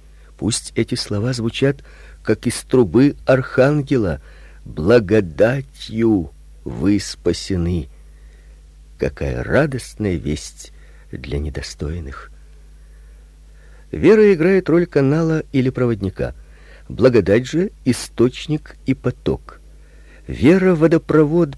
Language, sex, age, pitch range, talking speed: Russian, male, 50-69, 75-125 Hz, 80 wpm